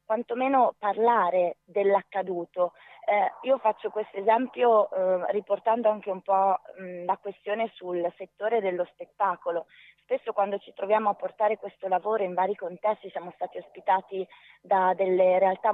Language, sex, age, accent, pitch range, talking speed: Italian, female, 20-39, native, 180-210 Hz, 135 wpm